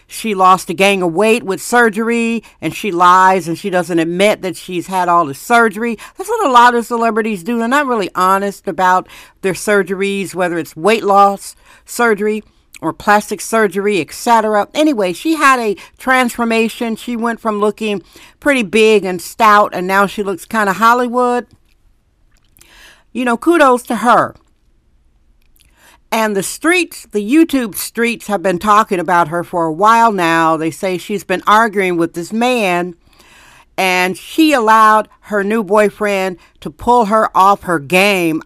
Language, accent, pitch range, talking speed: English, American, 185-230 Hz, 160 wpm